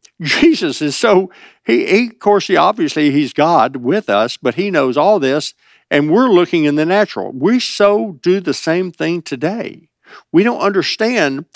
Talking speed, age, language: 175 wpm, 60-79, English